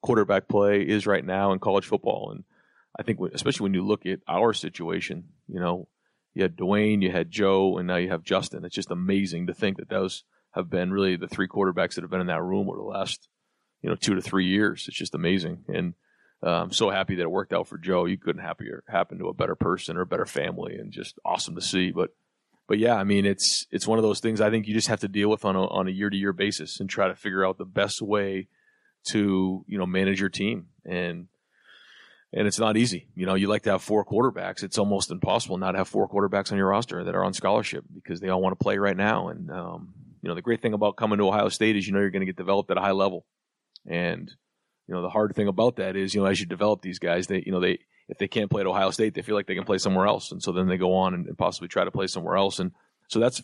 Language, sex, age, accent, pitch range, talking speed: English, male, 30-49, American, 95-105 Hz, 270 wpm